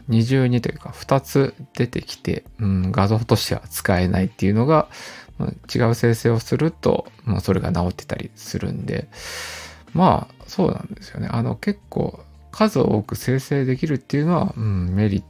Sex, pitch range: male, 100-130 Hz